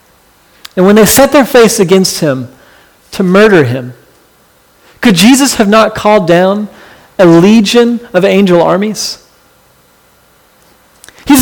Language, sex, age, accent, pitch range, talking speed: English, male, 40-59, American, 155-230 Hz, 120 wpm